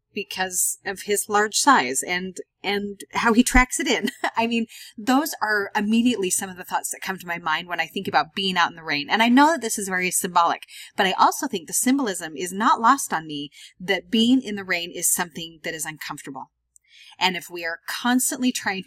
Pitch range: 180-230 Hz